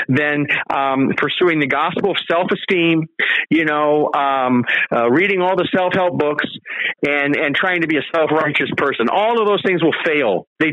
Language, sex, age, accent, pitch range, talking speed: English, male, 50-69, American, 150-200 Hz, 170 wpm